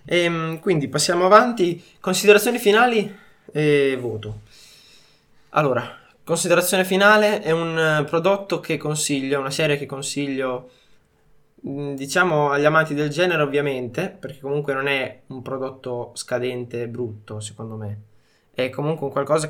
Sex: male